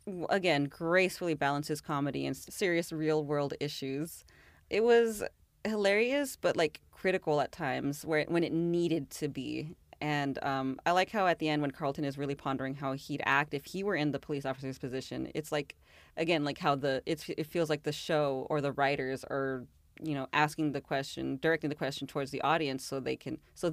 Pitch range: 140-170 Hz